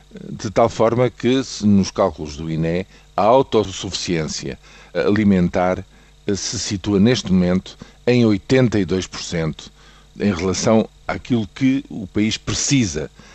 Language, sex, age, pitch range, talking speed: Portuguese, male, 50-69, 90-115 Hz, 110 wpm